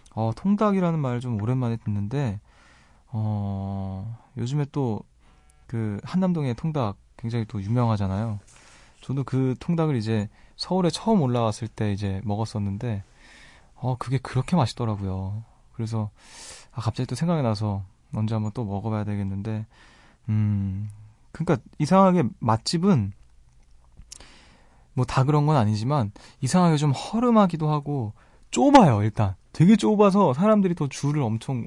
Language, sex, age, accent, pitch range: Korean, male, 20-39, native, 105-145 Hz